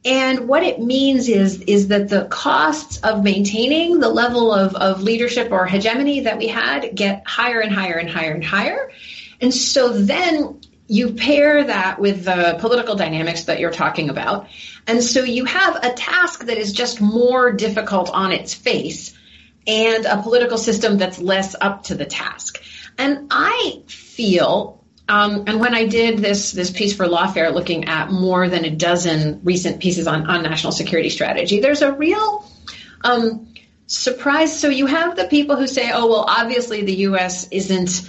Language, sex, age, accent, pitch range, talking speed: English, female, 40-59, American, 180-245 Hz, 175 wpm